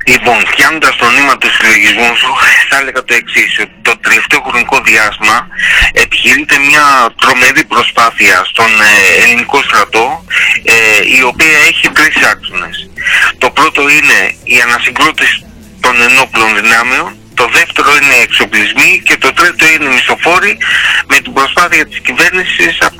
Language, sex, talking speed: Greek, male, 135 wpm